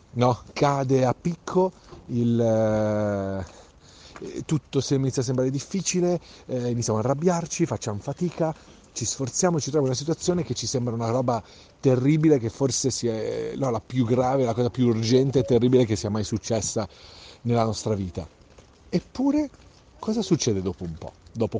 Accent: native